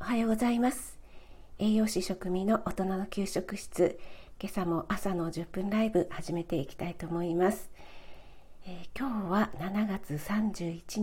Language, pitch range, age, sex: Japanese, 180-235 Hz, 50-69, female